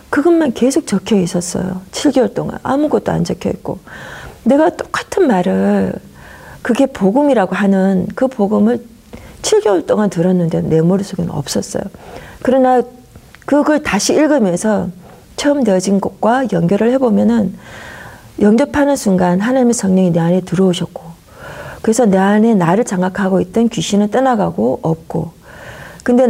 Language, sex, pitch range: Korean, female, 185-255 Hz